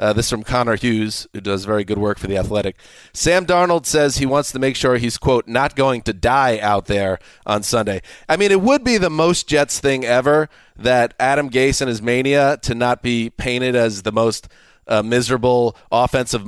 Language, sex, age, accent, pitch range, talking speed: English, male, 30-49, American, 115-140 Hz, 210 wpm